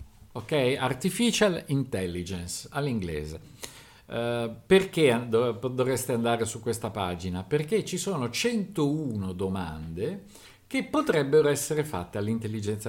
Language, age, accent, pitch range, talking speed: Italian, 50-69, native, 110-180 Hz, 100 wpm